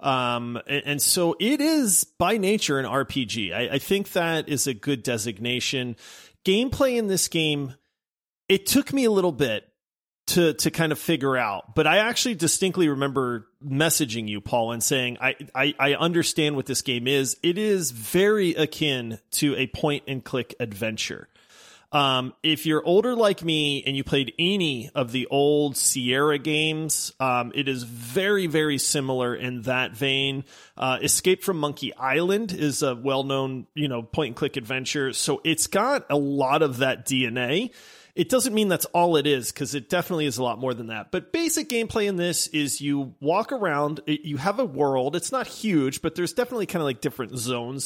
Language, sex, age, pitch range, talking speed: English, male, 30-49, 130-170 Hz, 185 wpm